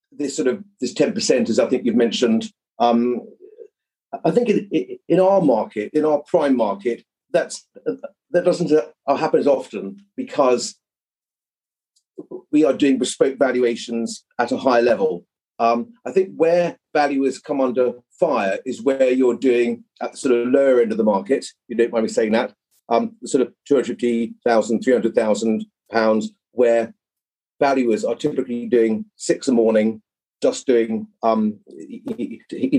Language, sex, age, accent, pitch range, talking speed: English, male, 40-59, British, 115-170 Hz, 155 wpm